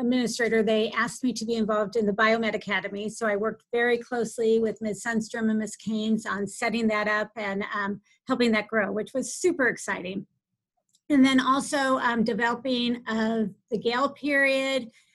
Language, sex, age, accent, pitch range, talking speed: English, female, 40-59, American, 220-265 Hz, 180 wpm